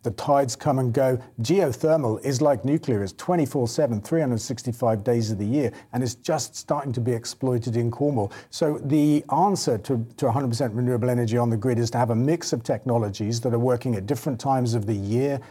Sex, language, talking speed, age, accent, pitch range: male, English, 195 wpm, 40-59, British, 115-140 Hz